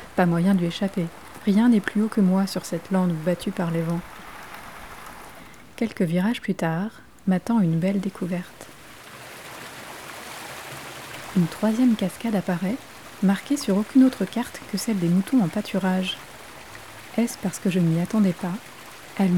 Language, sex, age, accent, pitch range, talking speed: French, female, 30-49, French, 180-210 Hz, 150 wpm